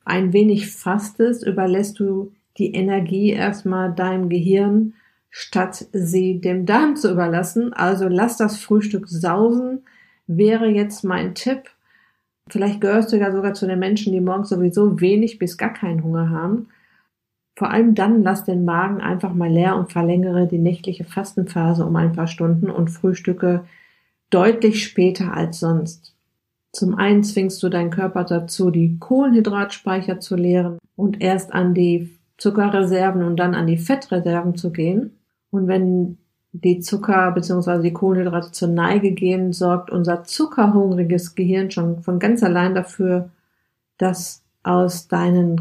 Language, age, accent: German, 50-69, German